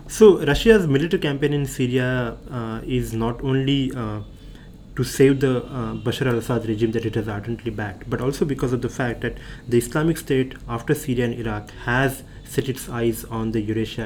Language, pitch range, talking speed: English, 115-135 Hz, 190 wpm